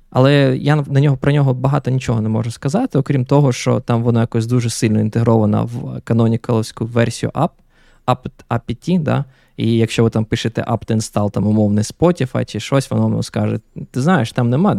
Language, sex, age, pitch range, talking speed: Ukrainian, male, 20-39, 115-145 Hz, 185 wpm